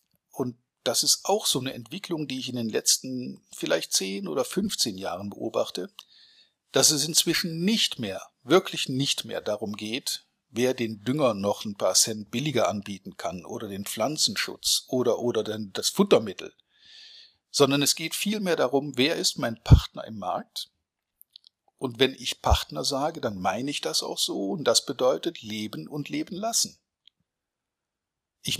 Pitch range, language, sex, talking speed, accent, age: 110-170 Hz, German, male, 155 wpm, German, 50-69